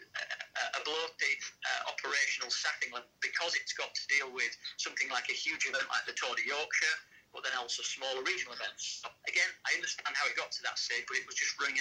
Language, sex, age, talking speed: English, male, 40-59, 220 wpm